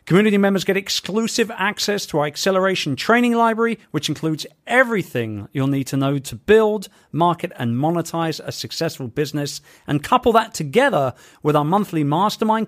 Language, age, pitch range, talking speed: English, 40-59, 130-195 Hz, 155 wpm